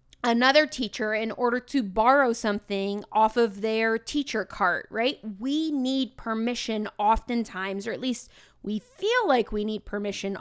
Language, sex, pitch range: English, female, 215-265 Hz